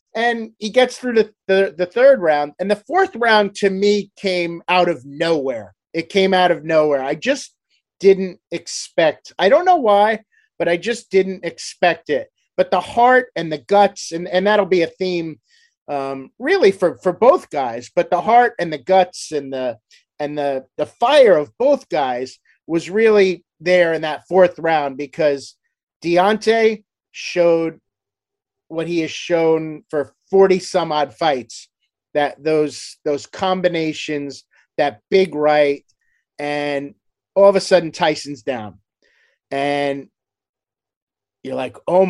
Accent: American